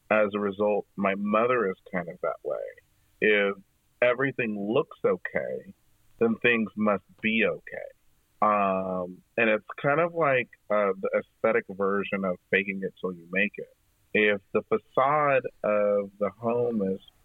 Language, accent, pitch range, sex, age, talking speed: English, American, 100-115 Hz, male, 40-59, 150 wpm